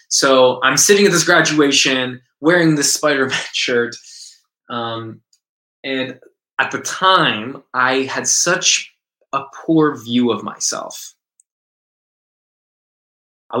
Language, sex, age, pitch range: English, male, 20-39, 120-160 Hz